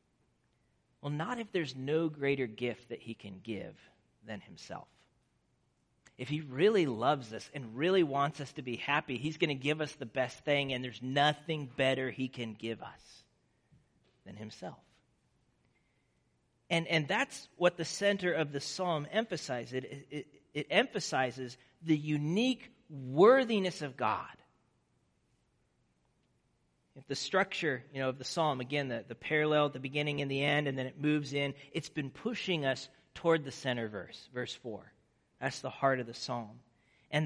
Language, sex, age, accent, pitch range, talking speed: English, male, 40-59, American, 125-160 Hz, 155 wpm